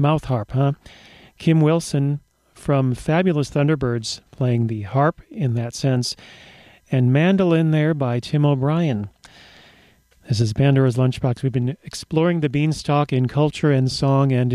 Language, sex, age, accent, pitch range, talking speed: English, male, 40-59, American, 125-150 Hz, 140 wpm